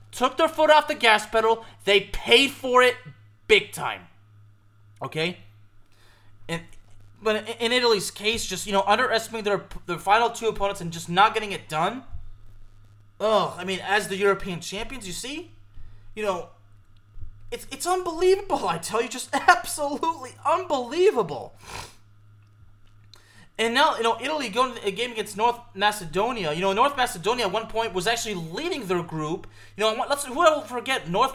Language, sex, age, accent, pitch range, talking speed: English, male, 30-49, American, 155-225 Hz, 165 wpm